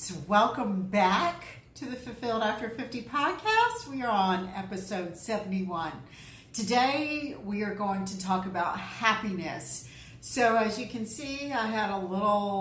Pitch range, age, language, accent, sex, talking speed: 185-250 Hz, 50-69, English, American, female, 150 wpm